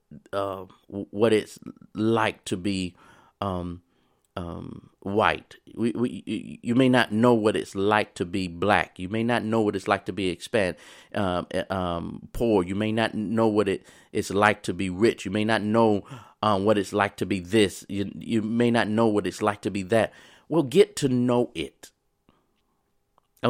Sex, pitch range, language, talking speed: male, 95-120 Hz, English, 190 wpm